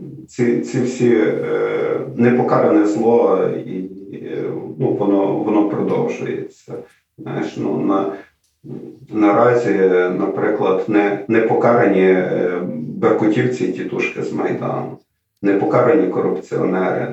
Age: 40-59